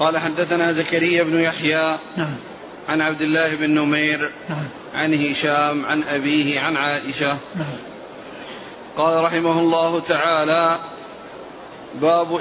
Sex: male